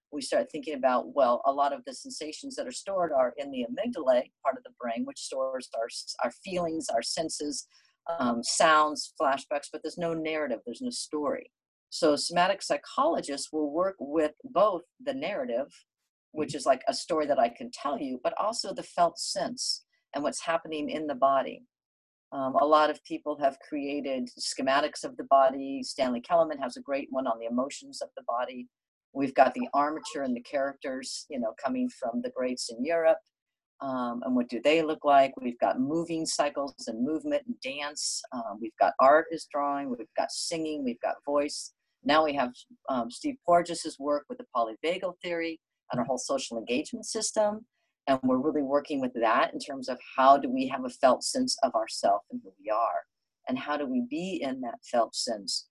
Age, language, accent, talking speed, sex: 50-69, English, American, 195 wpm, female